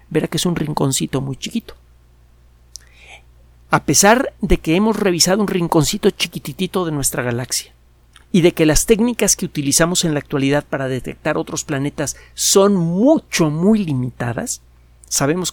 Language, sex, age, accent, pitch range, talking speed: Spanish, male, 50-69, Mexican, 115-170 Hz, 145 wpm